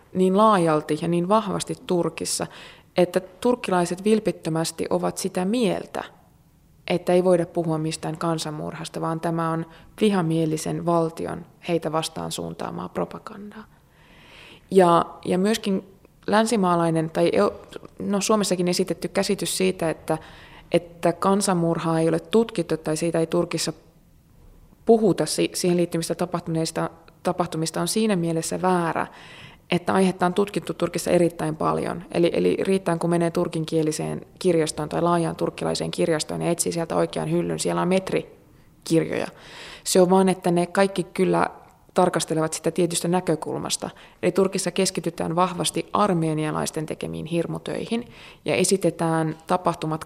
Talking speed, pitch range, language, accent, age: 120 wpm, 160-185 Hz, Finnish, native, 20-39